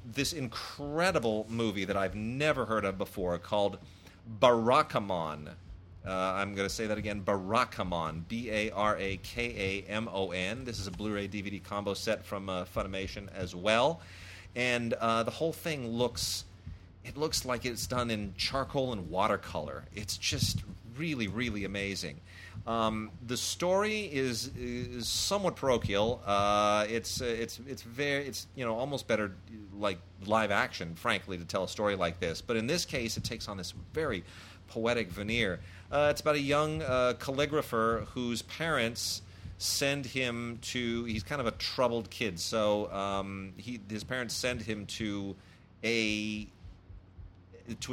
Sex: male